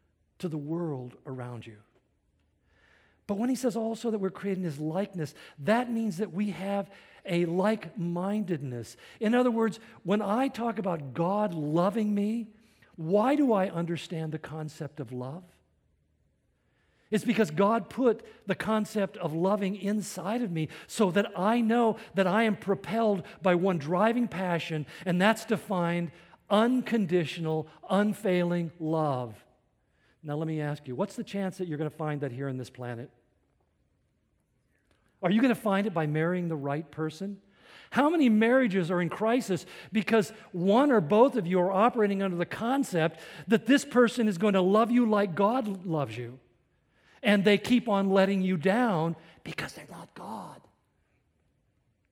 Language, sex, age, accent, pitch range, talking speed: English, male, 50-69, American, 155-215 Hz, 160 wpm